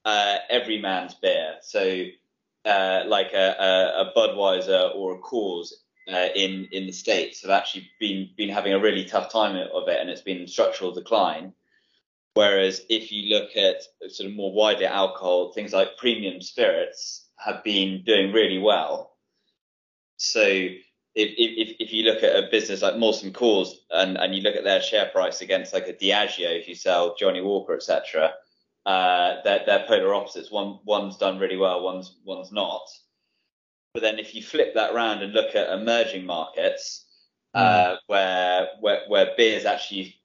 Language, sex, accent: English, male, British